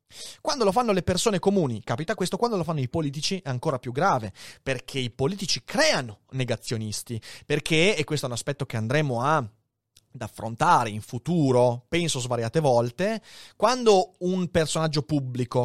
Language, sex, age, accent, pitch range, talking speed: Italian, male, 30-49, native, 120-170 Hz, 160 wpm